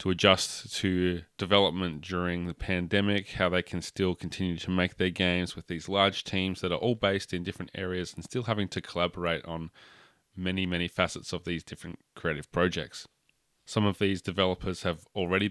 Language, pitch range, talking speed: English, 90-100 Hz, 180 wpm